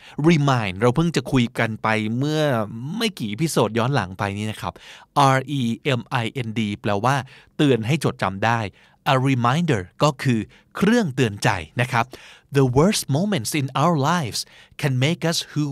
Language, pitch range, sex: Thai, 115-150 Hz, male